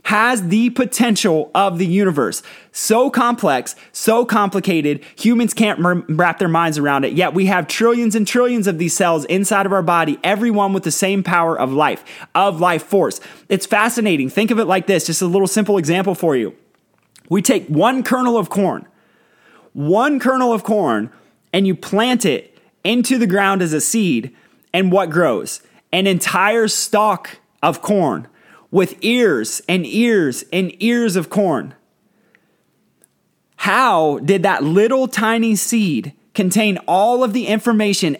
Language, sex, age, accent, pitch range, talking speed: English, male, 30-49, American, 180-220 Hz, 160 wpm